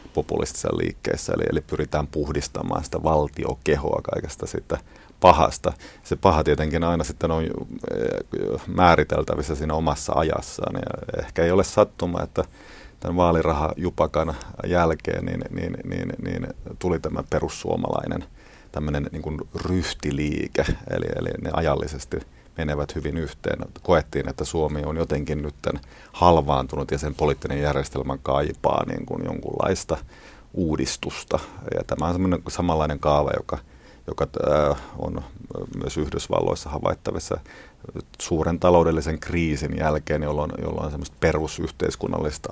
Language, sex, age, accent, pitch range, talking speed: Finnish, male, 30-49, native, 75-80 Hz, 115 wpm